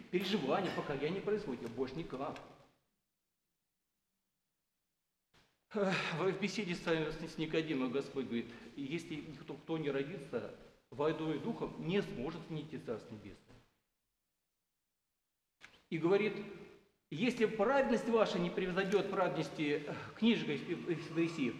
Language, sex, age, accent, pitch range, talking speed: Russian, male, 40-59, native, 135-205 Hz, 100 wpm